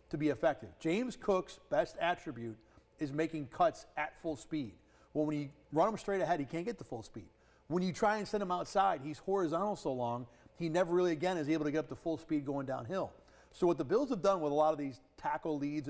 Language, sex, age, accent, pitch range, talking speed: English, male, 40-59, American, 145-185 Hz, 240 wpm